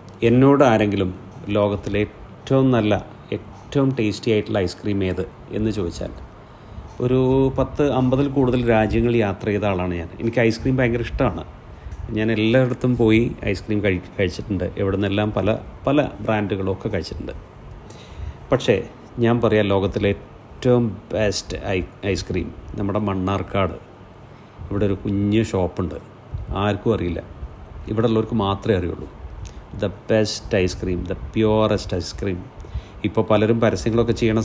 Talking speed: 115 wpm